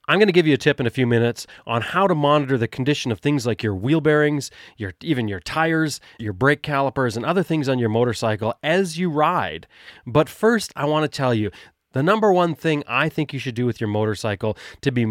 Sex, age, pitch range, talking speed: male, 30-49, 115-155 Hz, 240 wpm